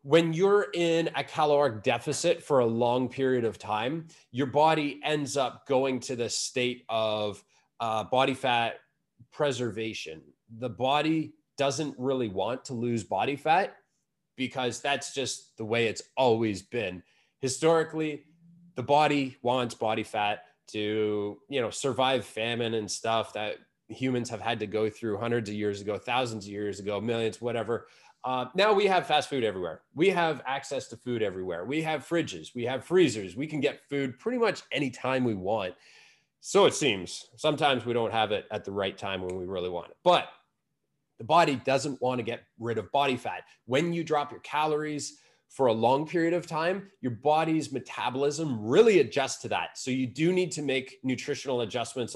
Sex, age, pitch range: male, 20-39, 115-150 Hz